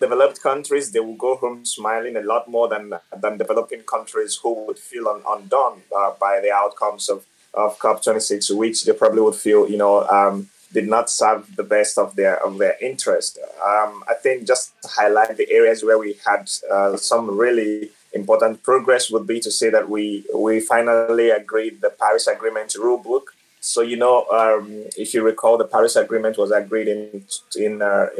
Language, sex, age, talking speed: English, male, 20-39, 185 wpm